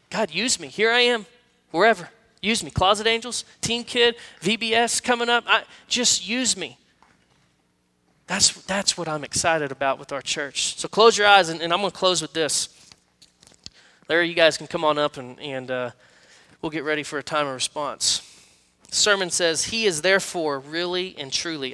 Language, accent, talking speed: English, American, 190 wpm